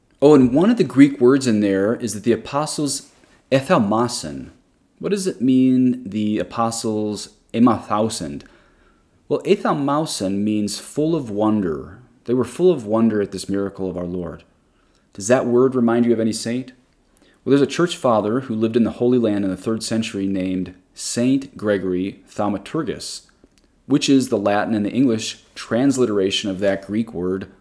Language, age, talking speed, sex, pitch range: English, 30-49, 165 wpm, male, 100-125 Hz